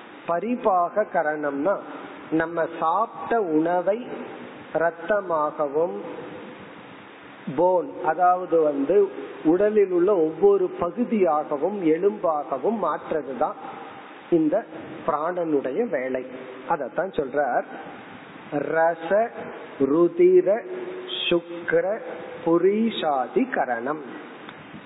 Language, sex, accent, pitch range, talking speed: Tamil, male, native, 150-195 Hz, 50 wpm